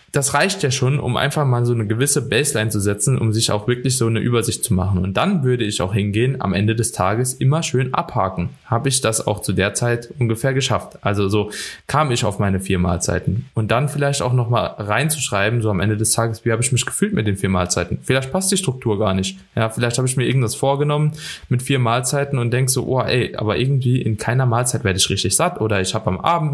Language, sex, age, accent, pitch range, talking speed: German, male, 20-39, German, 110-140 Hz, 240 wpm